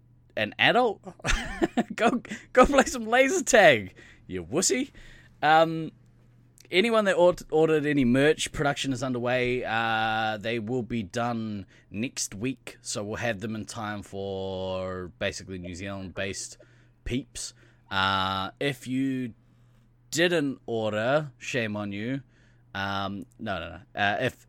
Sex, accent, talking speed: male, Australian, 125 wpm